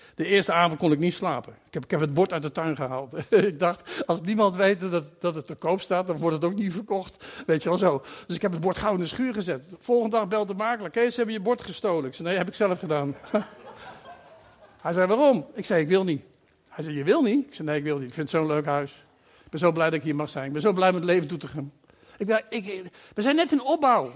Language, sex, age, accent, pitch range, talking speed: Dutch, male, 50-69, Dutch, 155-215 Hz, 285 wpm